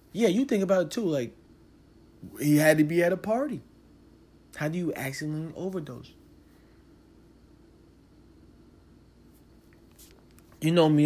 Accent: American